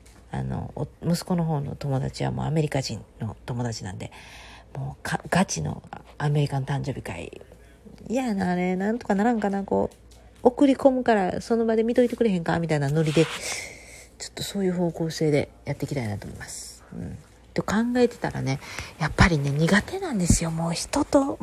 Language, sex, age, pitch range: Japanese, female, 40-59, 150-205 Hz